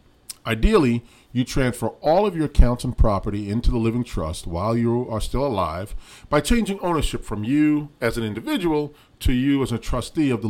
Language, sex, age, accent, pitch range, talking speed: English, male, 40-59, American, 100-140 Hz, 190 wpm